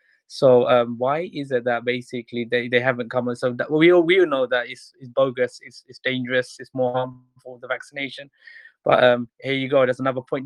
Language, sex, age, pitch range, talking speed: English, male, 20-39, 125-140 Hz, 235 wpm